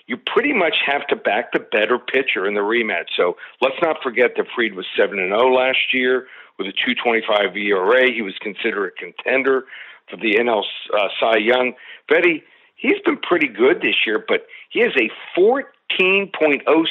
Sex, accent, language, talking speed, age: male, American, English, 195 wpm, 60-79